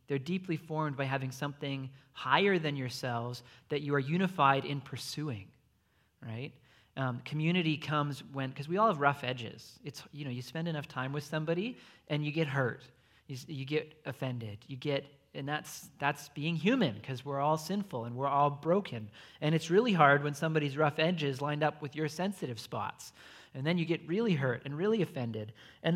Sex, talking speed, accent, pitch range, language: male, 190 wpm, American, 130-170 Hz, English